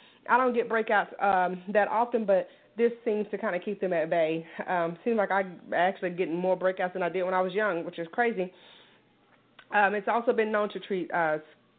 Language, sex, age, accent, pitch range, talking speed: English, female, 30-49, American, 180-215 Hz, 220 wpm